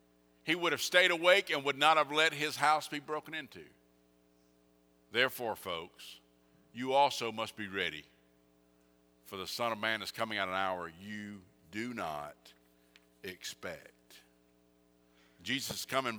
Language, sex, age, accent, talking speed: English, male, 50-69, American, 145 wpm